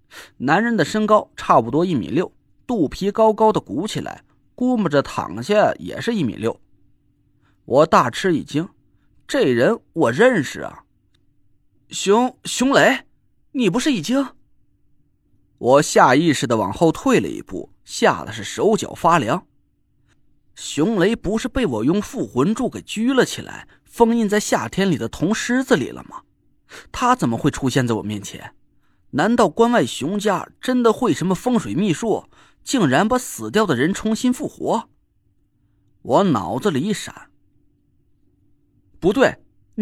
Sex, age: male, 30-49